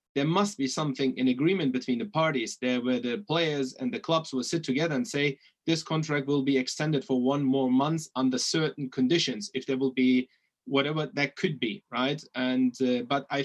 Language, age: English, 30-49